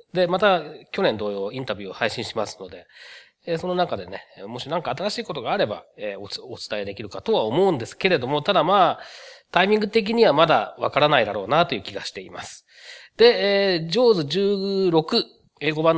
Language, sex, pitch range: Japanese, male, 120-195 Hz